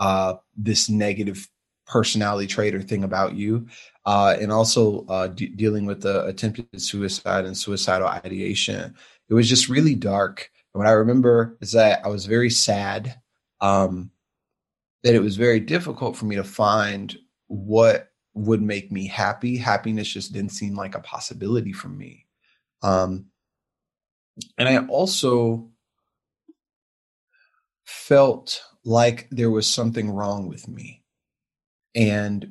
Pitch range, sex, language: 100-120 Hz, male, English